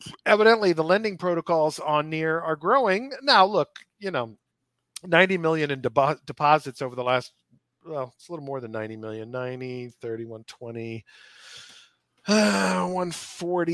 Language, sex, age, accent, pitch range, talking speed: English, male, 40-59, American, 125-165 Hz, 140 wpm